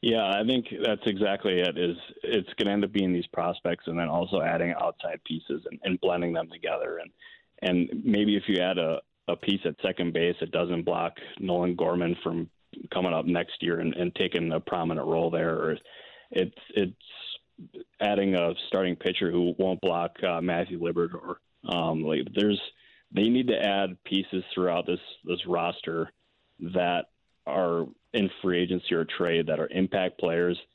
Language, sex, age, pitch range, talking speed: English, male, 30-49, 85-95 Hz, 180 wpm